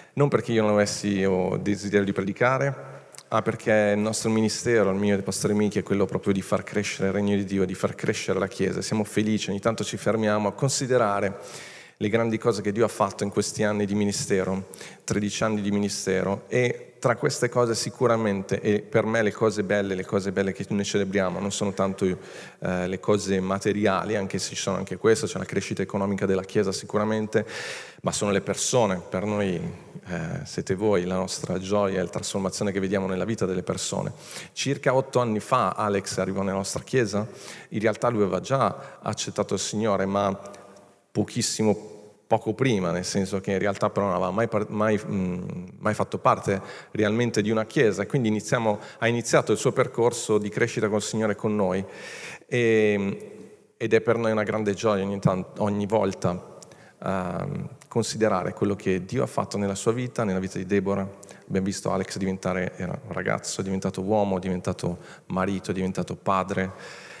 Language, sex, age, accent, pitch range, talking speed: Italian, male, 40-59, native, 95-110 Hz, 185 wpm